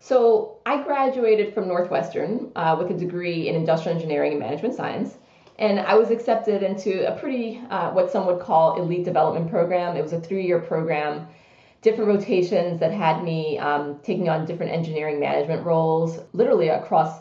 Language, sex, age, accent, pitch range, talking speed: English, female, 30-49, American, 160-195 Hz, 170 wpm